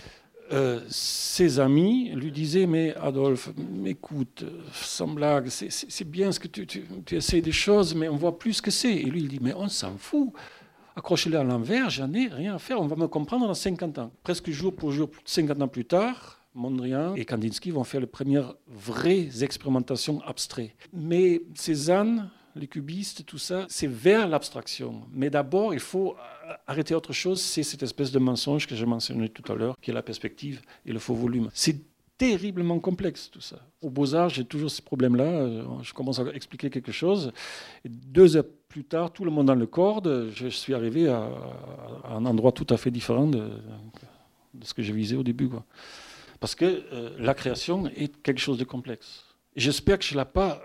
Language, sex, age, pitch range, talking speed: French, male, 60-79, 125-175 Hz, 200 wpm